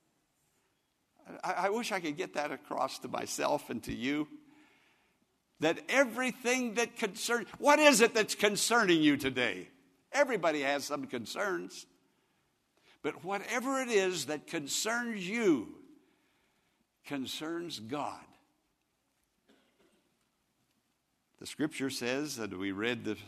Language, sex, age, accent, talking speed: English, male, 60-79, American, 110 wpm